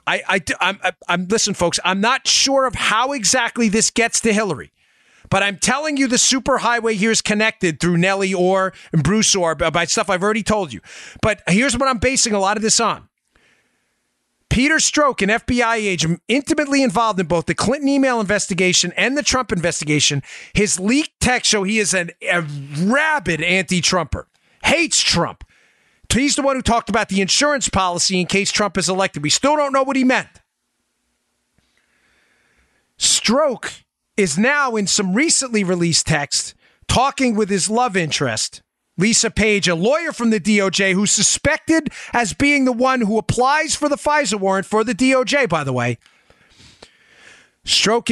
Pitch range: 185-255 Hz